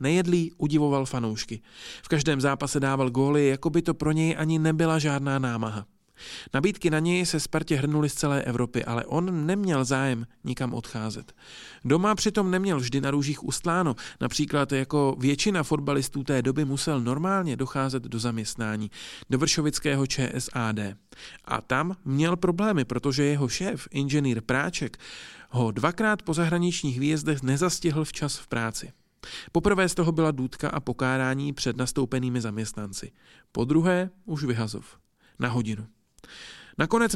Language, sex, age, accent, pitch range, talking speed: Czech, male, 40-59, native, 125-160 Hz, 140 wpm